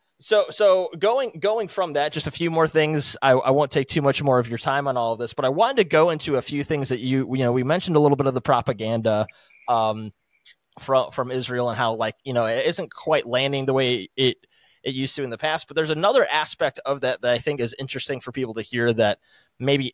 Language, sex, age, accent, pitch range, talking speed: English, male, 20-39, American, 120-145 Hz, 255 wpm